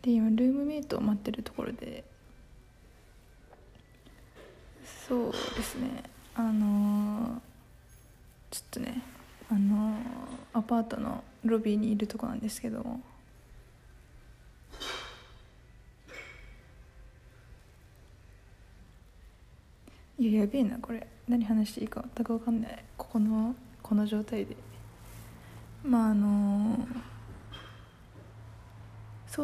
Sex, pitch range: female, 205-245 Hz